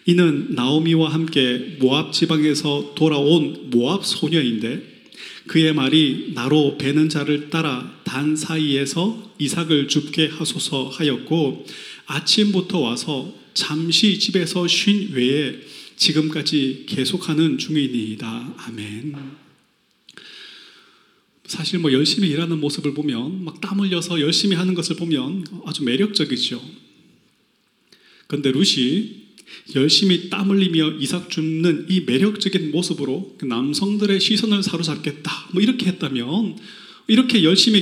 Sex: male